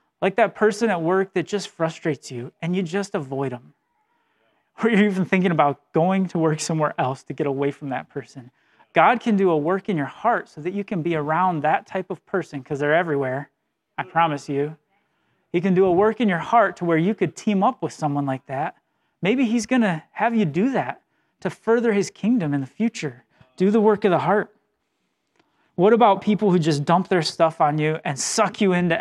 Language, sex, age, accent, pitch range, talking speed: English, male, 30-49, American, 155-205 Hz, 220 wpm